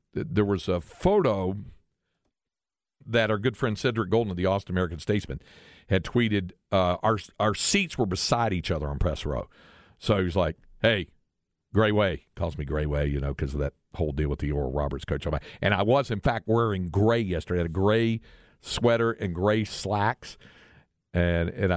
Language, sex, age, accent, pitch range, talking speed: English, male, 50-69, American, 85-115 Hz, 195 wpm